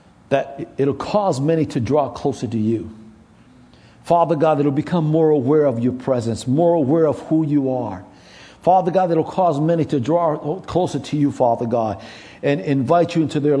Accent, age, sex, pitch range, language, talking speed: American, 60-79, male, 130-170 Hz, English, 180 wpm